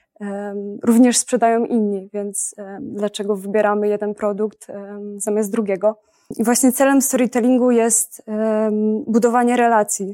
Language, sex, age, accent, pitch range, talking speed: Polish, female, 20-39, native, 210-235 Hz, 100 wpm